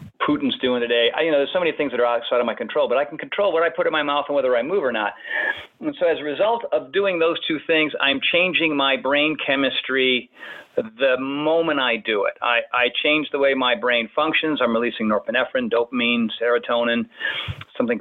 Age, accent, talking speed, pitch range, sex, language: 40-59, American, 220 wpm, 130-170 Hz, male, English